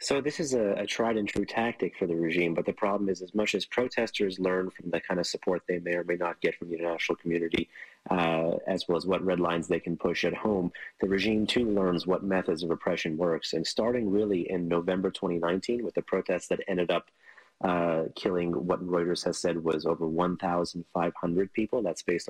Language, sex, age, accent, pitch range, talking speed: English, male, 30-49, American, 85-95 Hz, 215 wpm